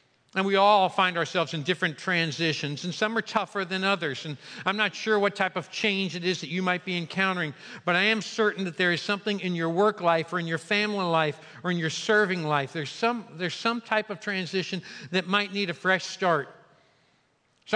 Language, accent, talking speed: English, American, 220 wpm